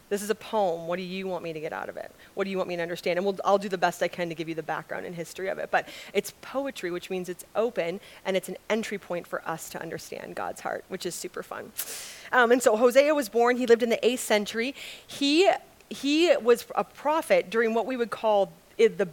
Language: English